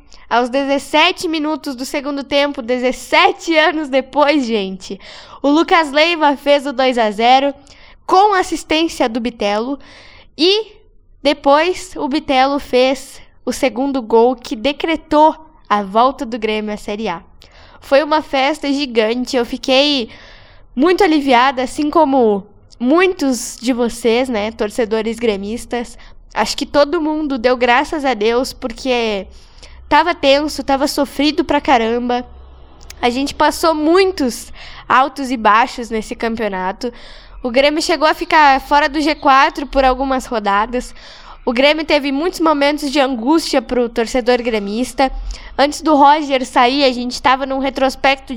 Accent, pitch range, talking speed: Brazilian, 245-300 Hz, 135 wpm